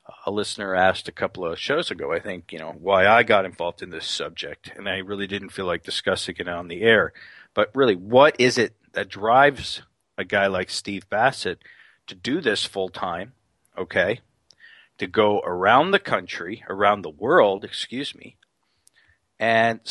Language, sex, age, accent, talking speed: English, male, 50-69, American, 180 wpm